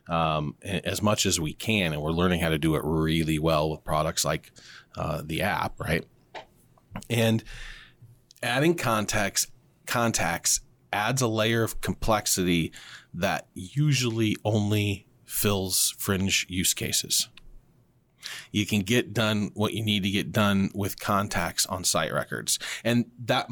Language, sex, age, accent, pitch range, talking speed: English, male, 30-49, American, 100-125 Hz, 140 wpm